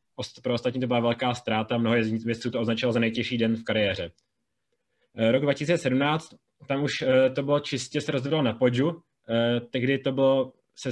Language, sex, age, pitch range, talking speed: Czech, male, 20-39, 120-135 Hz, 150 wpm